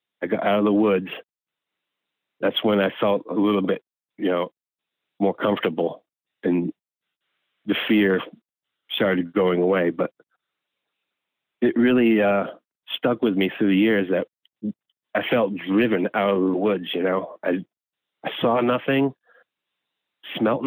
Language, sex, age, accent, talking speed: English, male, 30-49, American, 140 wpm